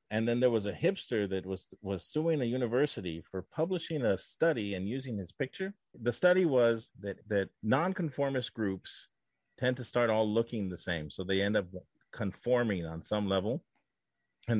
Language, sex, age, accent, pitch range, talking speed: English, male, 40-59, American, 95-125 Hz, 175 wpm